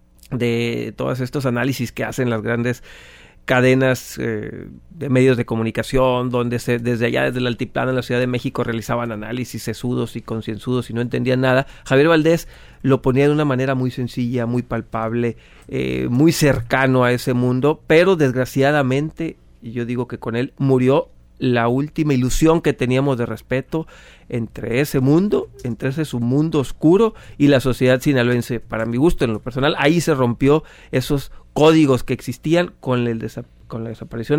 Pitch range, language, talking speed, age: 120-140 Hz, Spanish, 175 wpm, 40-59